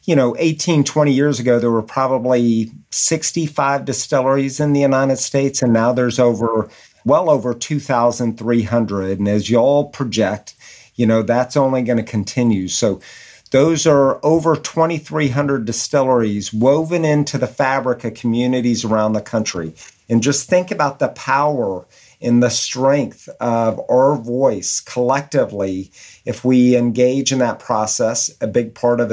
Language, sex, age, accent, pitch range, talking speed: English, male, 50-69, American, 115-140 Hz, 150 wpm